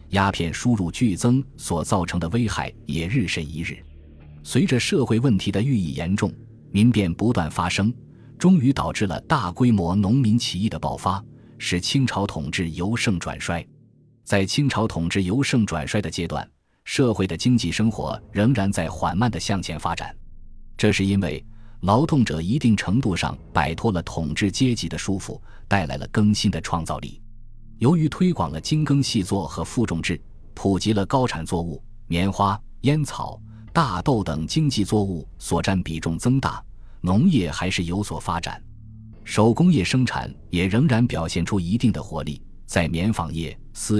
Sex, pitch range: male, 85-115 Hz